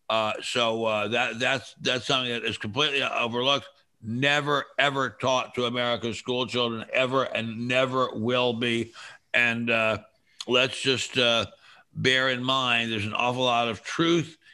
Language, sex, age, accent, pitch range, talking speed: English, male, 60-79, American, 110-130 Hz, 155 wpm